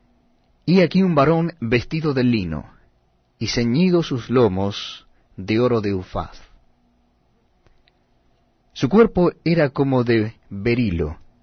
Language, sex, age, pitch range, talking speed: Spanish, male, 40-59, 85-135 Hz, 110 wpm